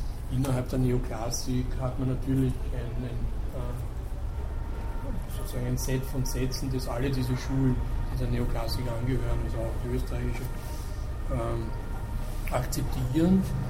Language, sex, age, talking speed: German, male, 60-79, 120 wpm